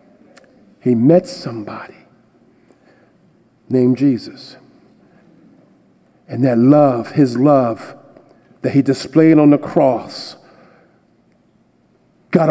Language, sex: English, male